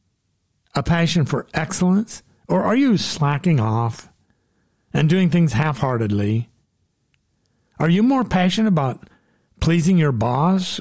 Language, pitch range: English, 115-180 Hz